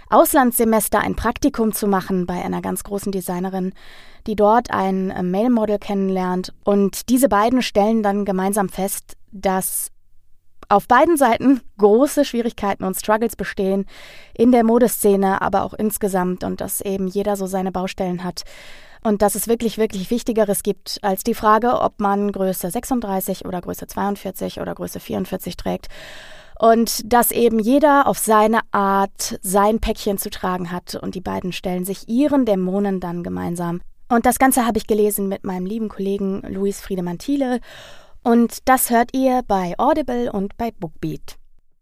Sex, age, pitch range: female, 20-39, 190-230 Hz